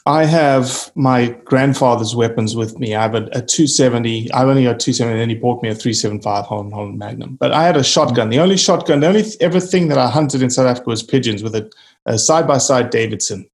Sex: male